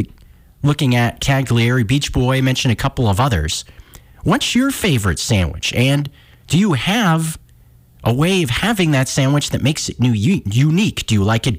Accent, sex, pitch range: American, male, 110-160 Hz